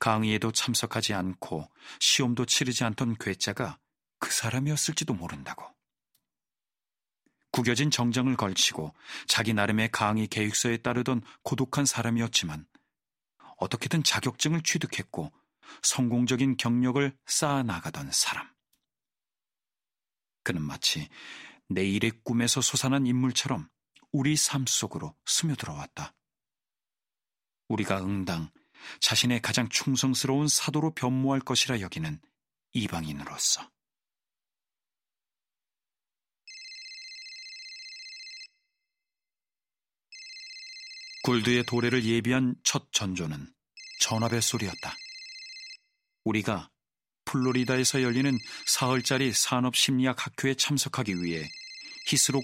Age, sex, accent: 40-59, male, native